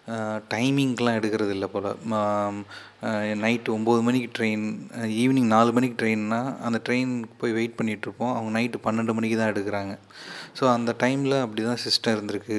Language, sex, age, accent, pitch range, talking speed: Tamil, male, 30-49, native, 105-115 Hz, 145 wpm